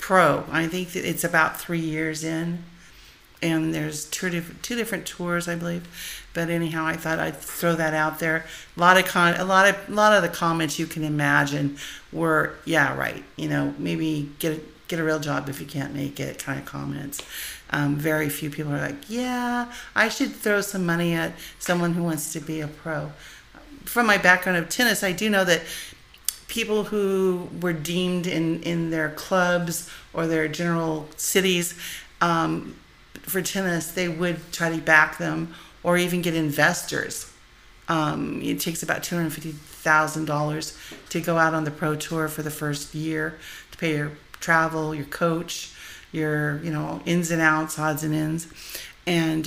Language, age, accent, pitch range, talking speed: English, 50-69, American, 155-175 Hz, 185 wpm